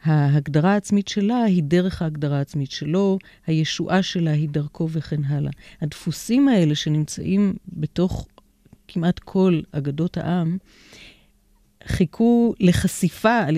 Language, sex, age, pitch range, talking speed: Hebrew, female, 40-59, 160-200 Hz, 110 wpm